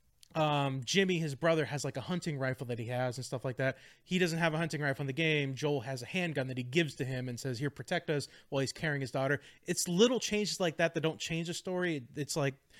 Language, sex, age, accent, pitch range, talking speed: English, male, 20-39, American, 140-175 Hz, 265 wpm